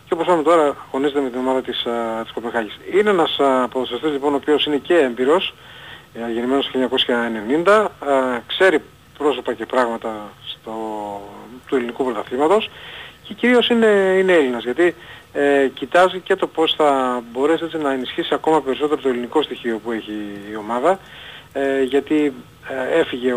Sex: male